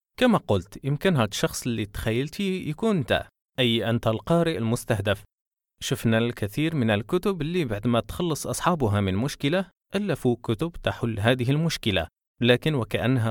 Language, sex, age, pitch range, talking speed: Arabic, male, 20-39, 105-145 Hz, 140 wpm